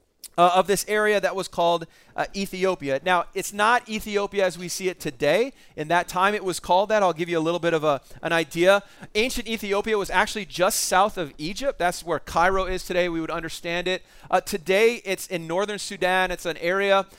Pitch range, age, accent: 170-200 Hz, 30-49, American